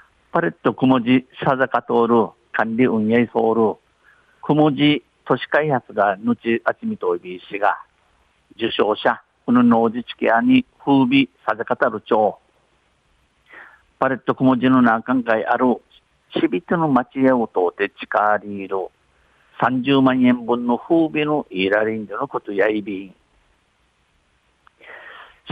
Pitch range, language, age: 115-135 Hz, Japanese, 50-69